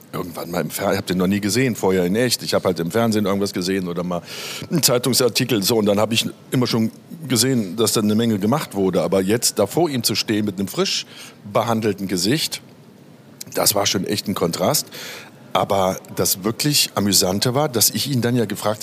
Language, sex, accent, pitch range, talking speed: German, male, German, 105-140 Hz, 205 wpm